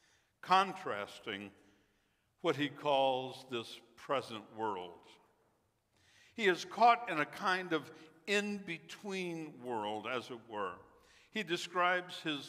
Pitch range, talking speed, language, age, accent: 125-170 Hz, 105 wpm, English, 60-79, American